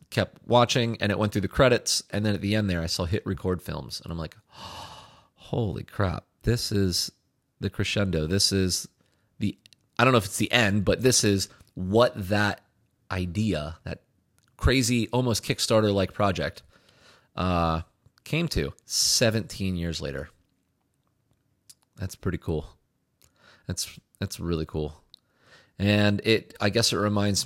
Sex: male